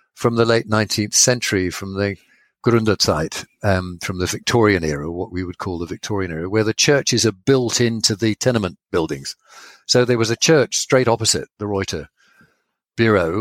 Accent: British